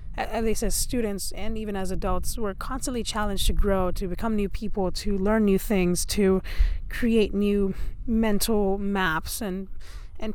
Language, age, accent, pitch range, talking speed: English, 20-39, American, 185-235 Hz, 160 wpm